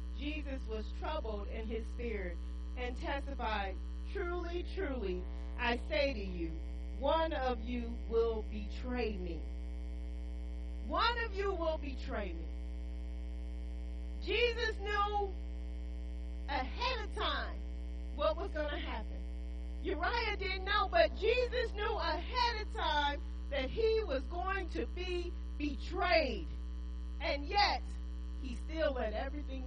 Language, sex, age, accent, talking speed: English, female, 40-59, American, 115 wpm